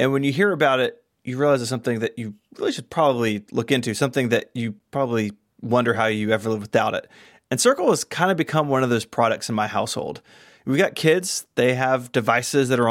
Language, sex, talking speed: English, male, 230 wpm